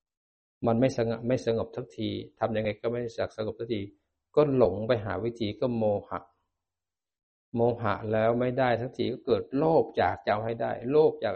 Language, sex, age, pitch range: Thai, male, 60-79, 100-120 Hz